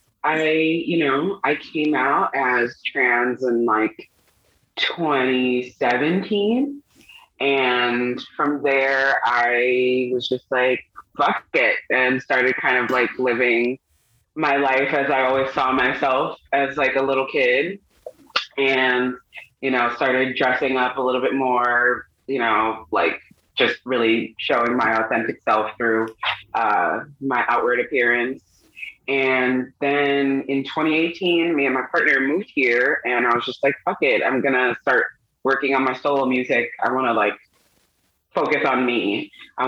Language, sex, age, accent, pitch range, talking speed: English, female, 20-39, American, 125-150 Hz, 145 wpm